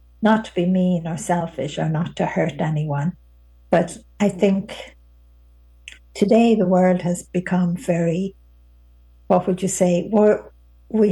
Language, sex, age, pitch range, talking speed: English, female, 60-79, 145-195 Hz, 135 wpm